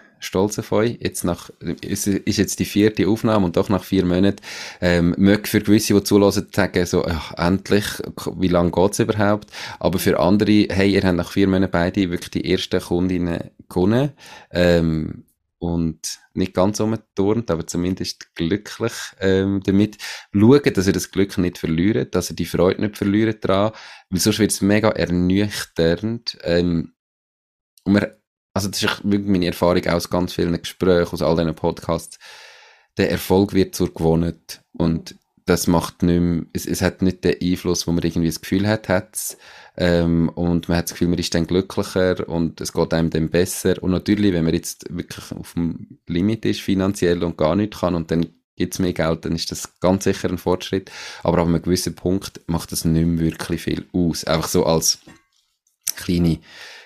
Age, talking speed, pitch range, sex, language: 30-49, 185 wpm, 85-100 Hz, male, German